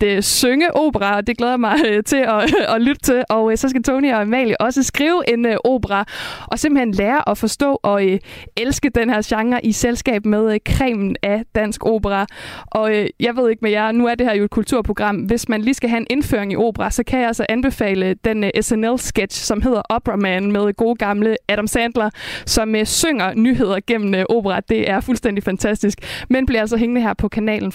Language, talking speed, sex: Danish, 195 wpm, female